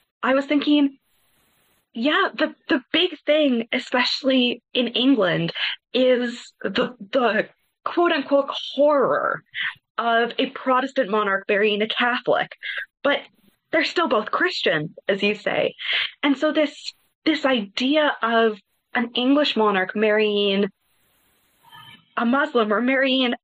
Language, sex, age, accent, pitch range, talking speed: English, female, 20-39, American, 215-270 Hz, 115 wpm